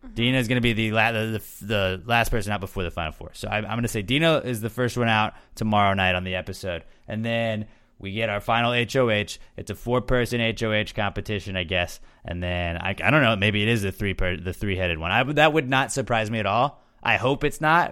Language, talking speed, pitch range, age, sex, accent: English, 255 wpm, 95-120 Hz, 30-49, male, American